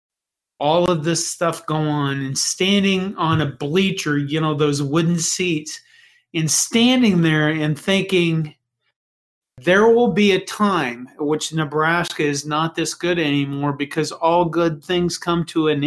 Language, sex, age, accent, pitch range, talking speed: English, male, 40-59, American, 150-195 Hz, 150 wpm